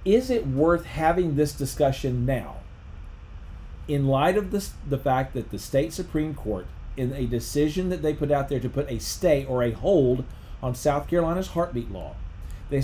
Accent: American